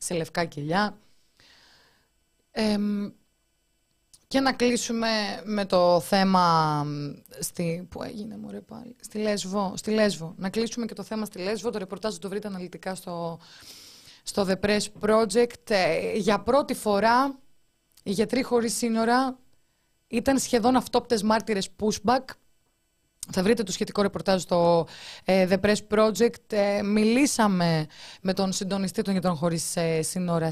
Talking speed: 130 wpm